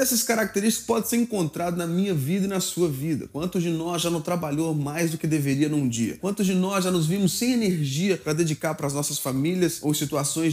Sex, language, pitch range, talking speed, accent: male, Portuguese, 155-205 Hz, 230 wpm, Brazilian